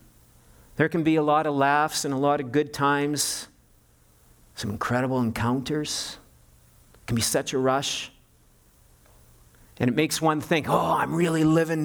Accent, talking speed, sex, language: American, 155 wpm, male, English